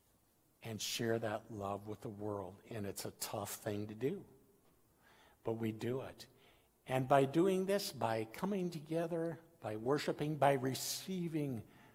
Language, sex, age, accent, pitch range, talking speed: English, male, 60-79, American, 110-140 Hz, 145 wpm